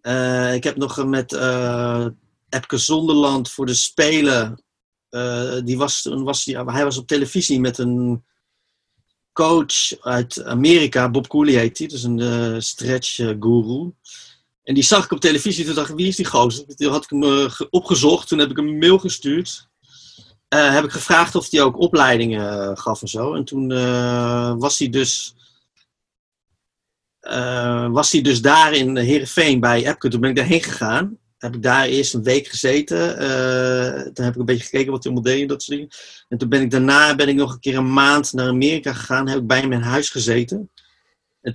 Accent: Dutch